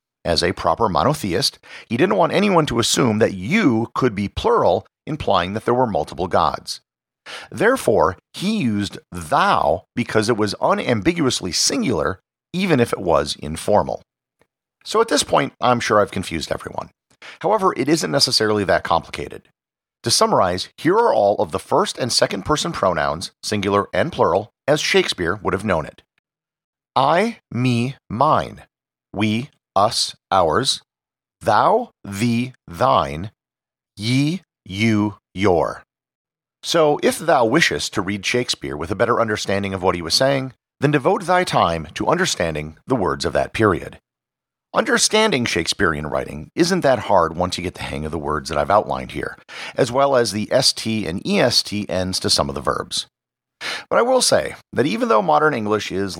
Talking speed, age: 160 wpm, 50-69